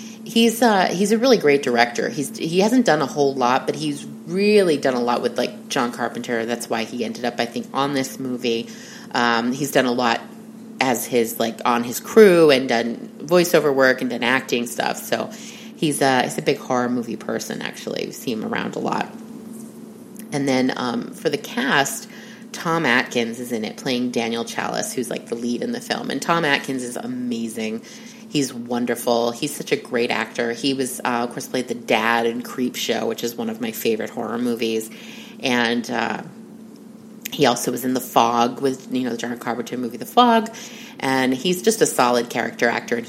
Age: 30-49